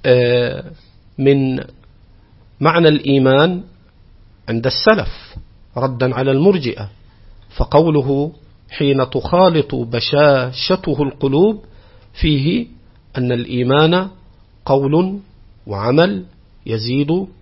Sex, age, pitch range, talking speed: male, 50-69, 105-155 Hz, 65 wpm